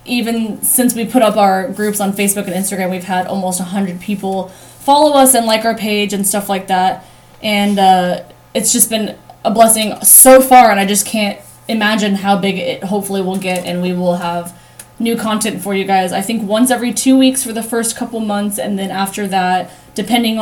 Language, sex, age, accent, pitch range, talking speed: English, female, 10-29, American, 195-250 Hz, 210 wpm